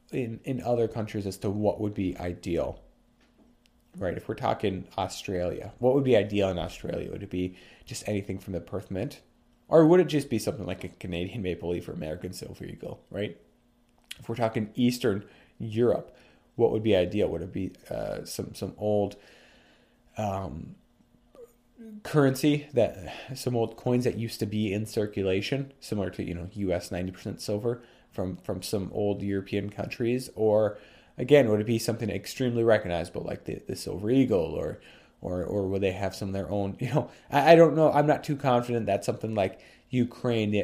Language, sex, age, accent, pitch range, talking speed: English, male, 30-49, American, 95-120 Hz, 185 wpm